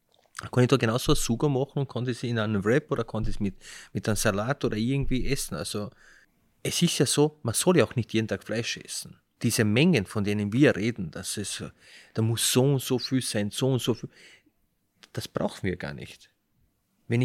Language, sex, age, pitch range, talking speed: German, male, 30-49, 110-135 Hz, 215 wpm